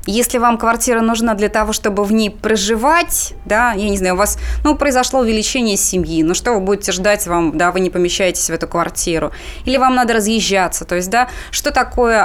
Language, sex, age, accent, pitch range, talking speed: Russian, female, 20-39, native, 185-230 Hz, 205 wpm